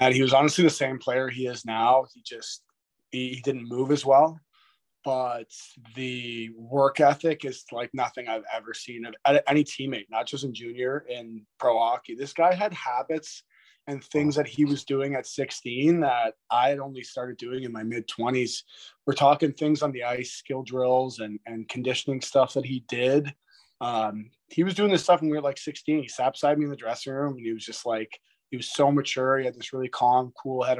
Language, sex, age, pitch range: English, male, 20-39, 115-140 Hz